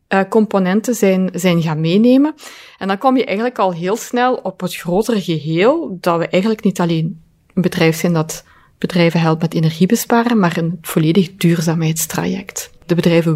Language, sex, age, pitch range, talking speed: Dutch, female, 30-49, 175-215 Hz, 165 wpm